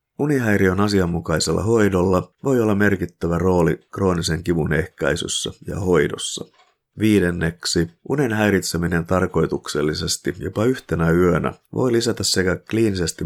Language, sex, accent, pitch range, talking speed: Finnish, male, native, 85-100 Hz, 105 wpm